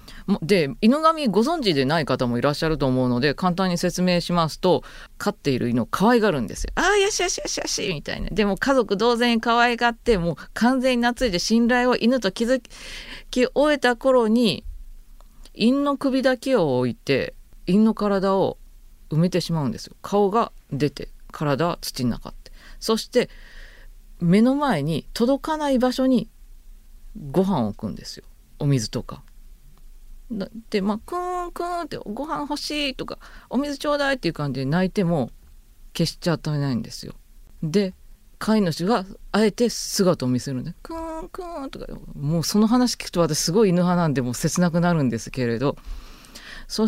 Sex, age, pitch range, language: female, 40-59, 145-240 Hz, Japanese